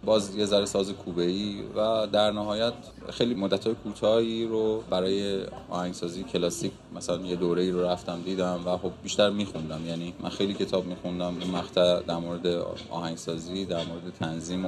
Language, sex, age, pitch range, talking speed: Persian, male, 20-39, 90-105 Hz, 155 wpm